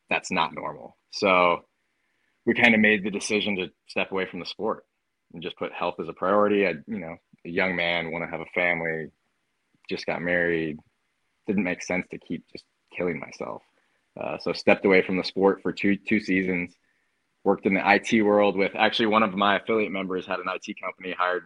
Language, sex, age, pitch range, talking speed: English, male, 20-39, 85-100 Hz, 205 wpm